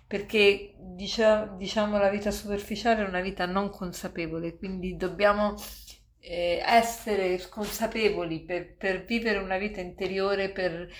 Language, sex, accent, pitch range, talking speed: Italian, female, native, 175-205 Hz, 120 wpm